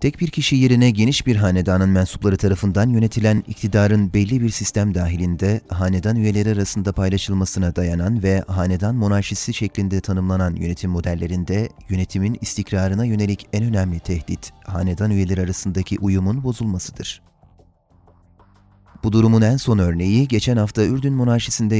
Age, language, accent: 30-49, Turkish, native